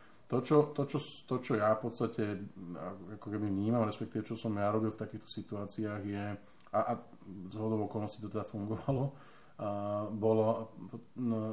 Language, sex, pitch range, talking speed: Slovak, male, 100-115 Hz, 160 wpm